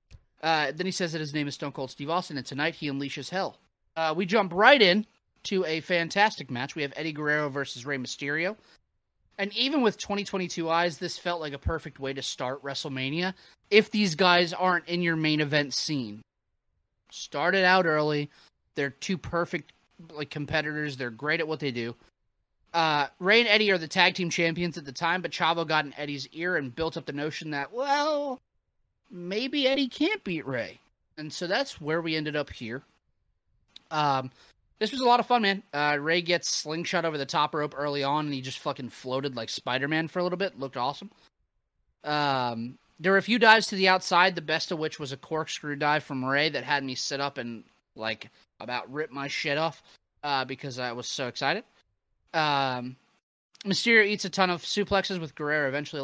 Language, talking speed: English, 200 wpm